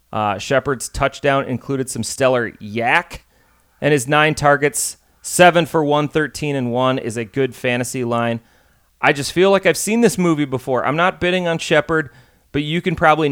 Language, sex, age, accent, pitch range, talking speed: English, male, 30-49, American, 125-155 Hz, 175 wpm